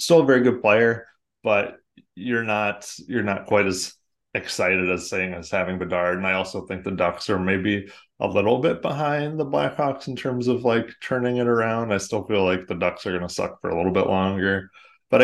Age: 30-49